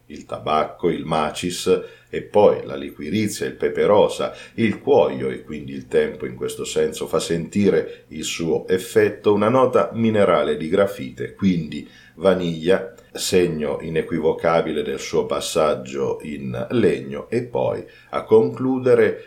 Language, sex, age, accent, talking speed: Italian, male, 40-59, native, 135 wpm